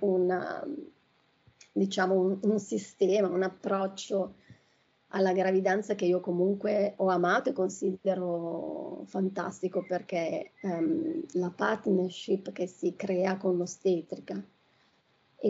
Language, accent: Italian, native